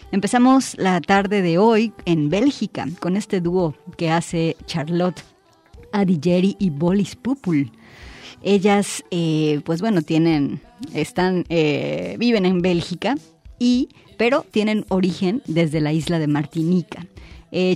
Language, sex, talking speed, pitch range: Spanish, female, 125 wpm, 170-215 Hz